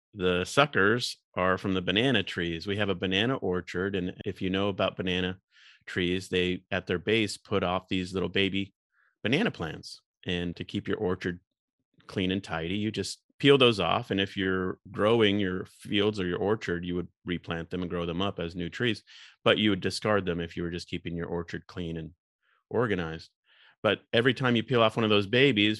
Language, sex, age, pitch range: English, male, 30-49, 90-105 Hz